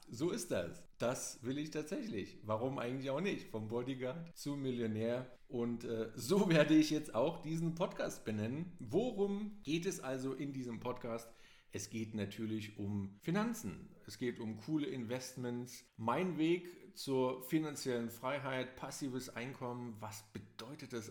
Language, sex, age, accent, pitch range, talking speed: German, male, 40-59, German, 110-135 Hz, 150 wpm